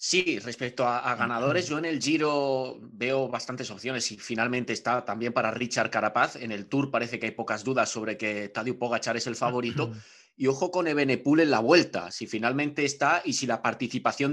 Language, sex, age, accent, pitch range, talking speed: Spanish, male, 20-39, Spanish, 115-135 Hz, 200 wpm